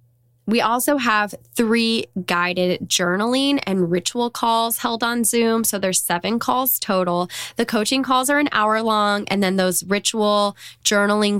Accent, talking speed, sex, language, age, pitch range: American, 155 wpm, female, English, 10-29, 185-245 Hz